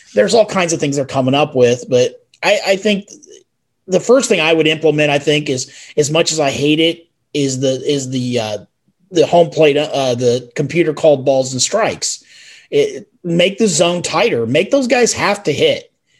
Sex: male